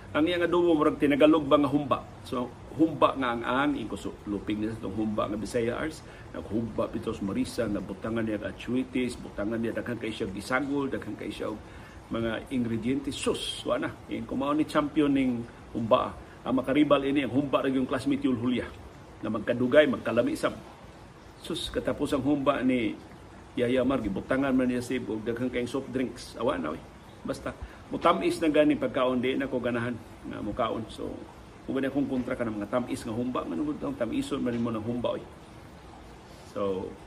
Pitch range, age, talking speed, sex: 115-145 Hz, 50-69, 170 wpm, male